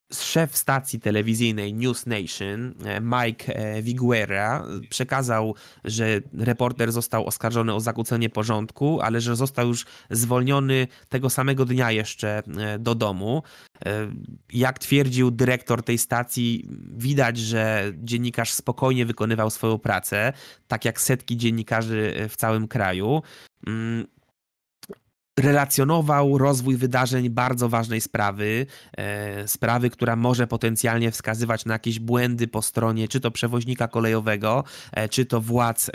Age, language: 20-39, Polish